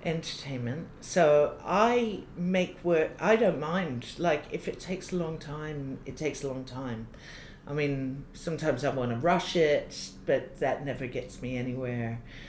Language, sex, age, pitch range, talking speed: English, female, 50-69, 140-185 Hz, 165 wpm